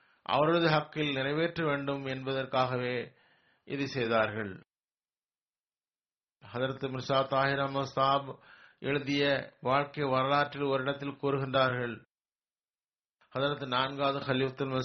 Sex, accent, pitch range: male, native, 130-145 Hz